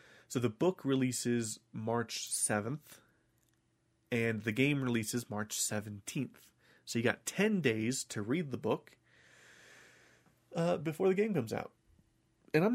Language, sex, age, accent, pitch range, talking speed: English, male, 30-49, American, 110-135 Hz, 135 wpm